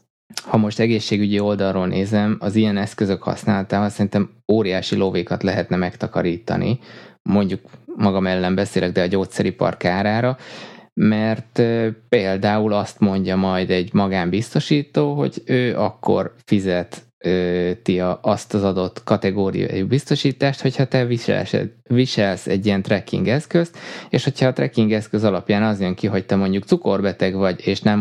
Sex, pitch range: male, 95-115 Hz